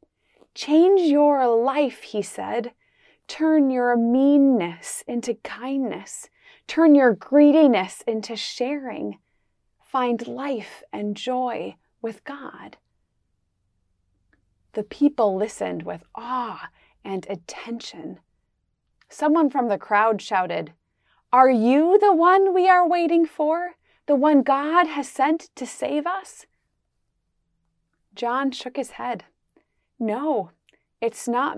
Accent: American